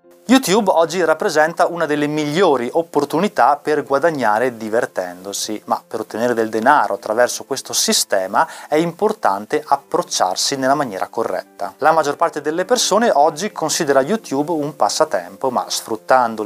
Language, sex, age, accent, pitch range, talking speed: Italian, male, 30-49, native, 115-175 Hz, 130 wpm